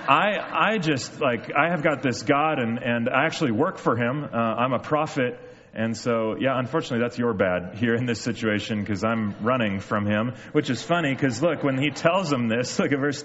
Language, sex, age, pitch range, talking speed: English, male, 30-49, 110-145 Hz, 220 wpm